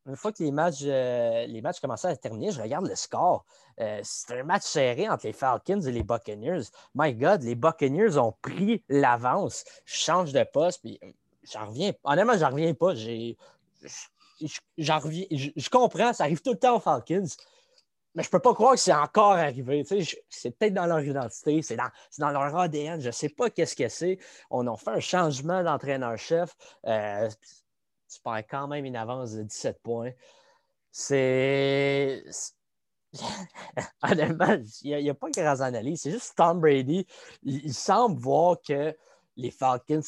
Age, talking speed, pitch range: 20-39, 185 wpm, 130-175 Hz